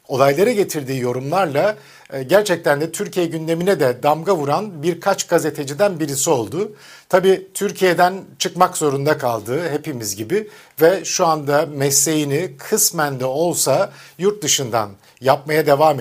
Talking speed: 120 wpm